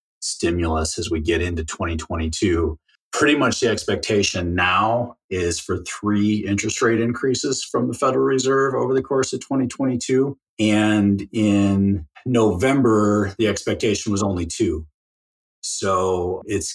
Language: English